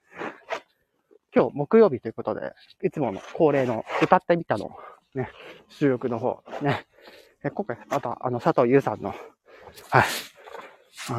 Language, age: Japanese, 40-59